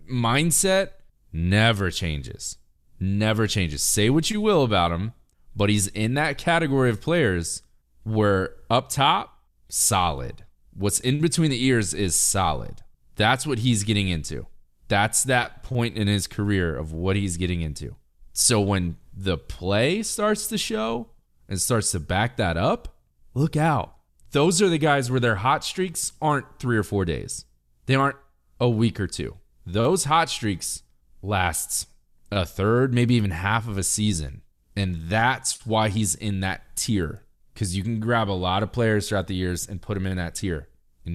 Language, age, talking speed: English, 30-49, 170 wpm